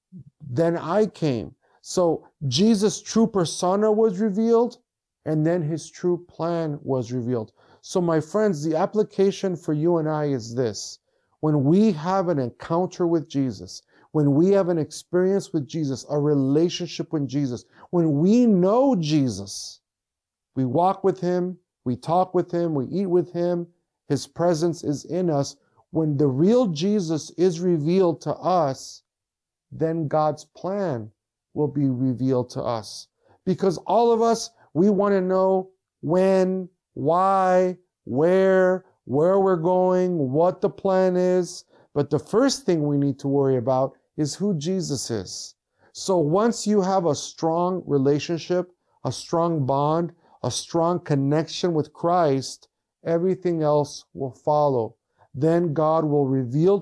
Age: 50-69